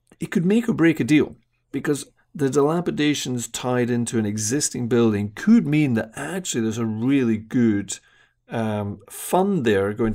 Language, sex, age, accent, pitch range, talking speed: English, male, 40-59, British, 110-140 Hz, 160 wpm